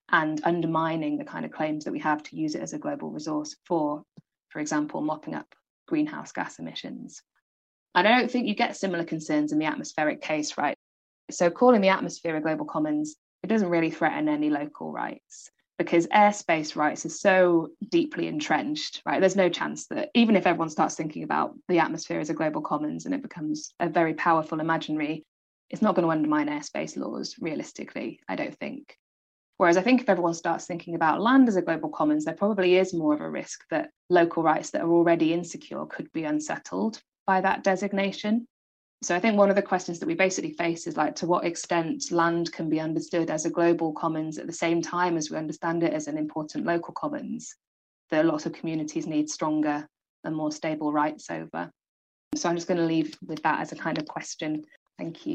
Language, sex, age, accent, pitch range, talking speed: English, female, 20-39, British, 155-195 Hz, 205 wpm